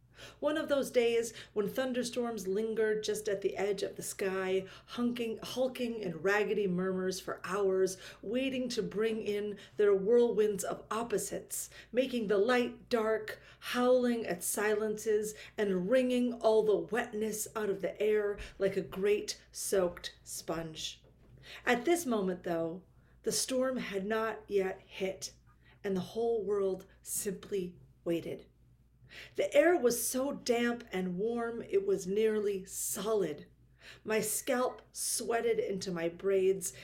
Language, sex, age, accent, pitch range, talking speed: English, female, 40-59, American, 190-235 Hz, 135 wpm